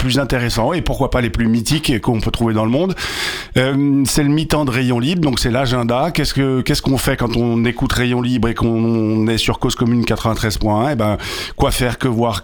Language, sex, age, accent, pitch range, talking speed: French, male, 50-69, French, 110-140 Hz, 235 wpm